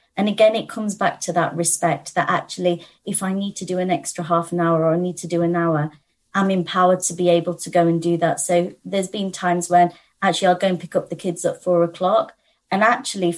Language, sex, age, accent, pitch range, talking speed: English, female, 30-49, British, 170-200 Hz, 245 wpm